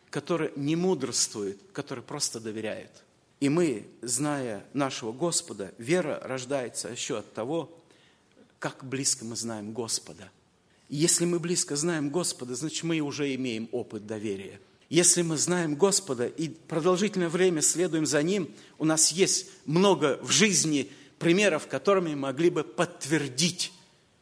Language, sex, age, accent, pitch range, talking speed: Russian, male, 50-69, native, 120-165 Hz, 135 wpm